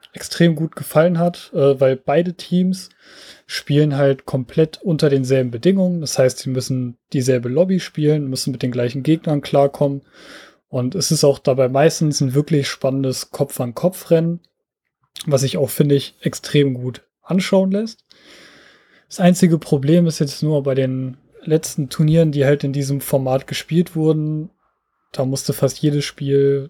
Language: German